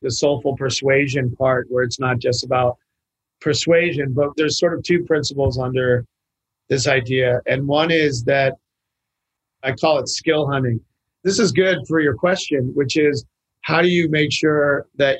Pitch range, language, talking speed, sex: 125-150 Hz, English, 165 wpm, male